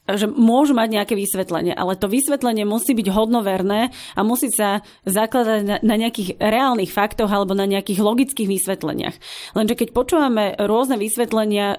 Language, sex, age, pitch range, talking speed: Slovak, female, 30-49, 195-230 Hz, 150 wpm